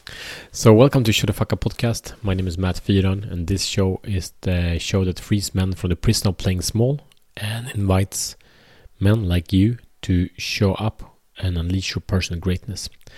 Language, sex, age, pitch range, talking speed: Swedish, male, 30-49, 90-105 Hz, 180 wpm